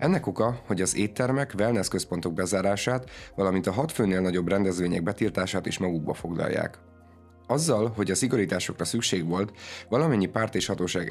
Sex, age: male, 30-49